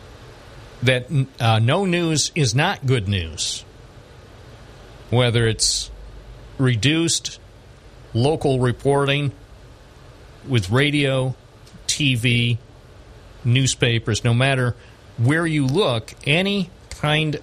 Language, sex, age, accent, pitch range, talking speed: English, male, 50-69, American, 110-135 Hz, 85 wpm